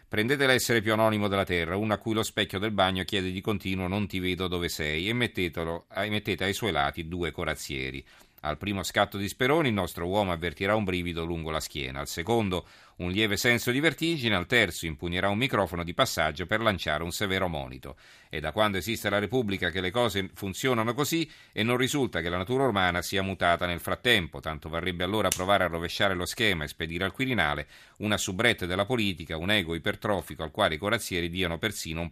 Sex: male